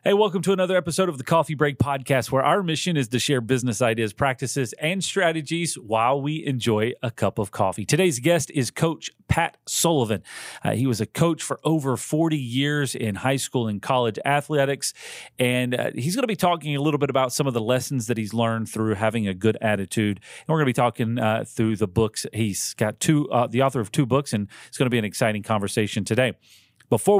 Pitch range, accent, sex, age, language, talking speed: 110-145 Hz, American, male, 40-59, English, 225 wpm